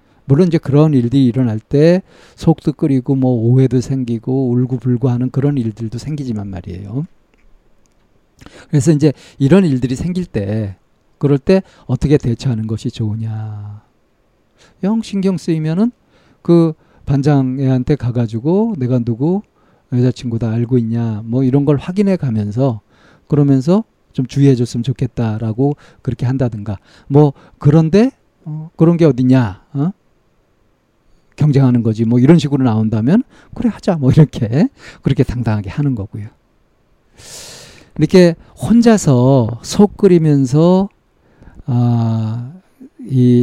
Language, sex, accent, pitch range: Korean, male, native, 120-165 Hz